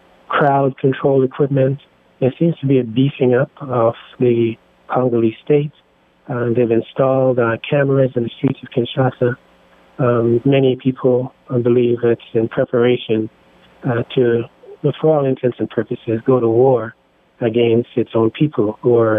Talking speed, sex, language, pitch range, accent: 145 wpm, male, English, 115-130 Hz, American